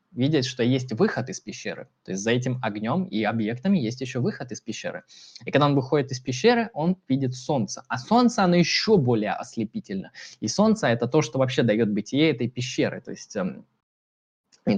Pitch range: 120-155 Hz